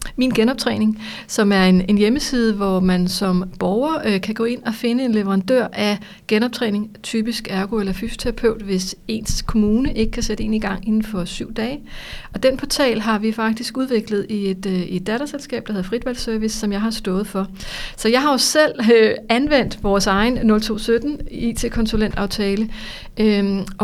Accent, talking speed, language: native, 175 wpm, Danish